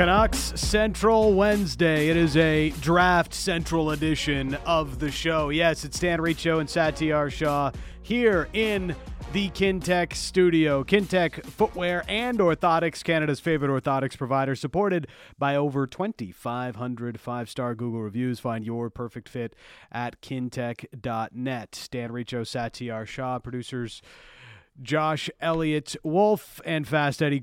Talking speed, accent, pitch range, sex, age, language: 120 wpm, American, 120-160 Hz, male, 30-49, English